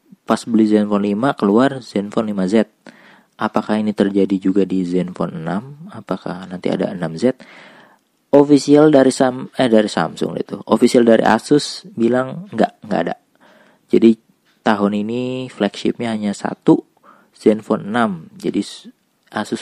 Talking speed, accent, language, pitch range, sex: 130 wpm, native, Indonesian, 100-120 Hz, male